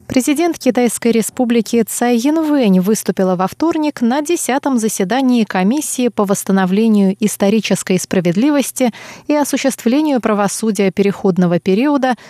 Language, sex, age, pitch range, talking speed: Russian, female, 30-49, 190-245 Hz, 100 wpm